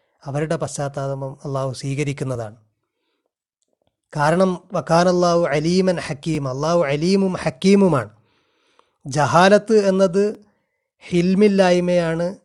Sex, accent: male, native